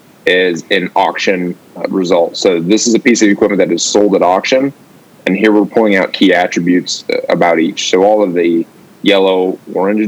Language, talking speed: English, 185 wpm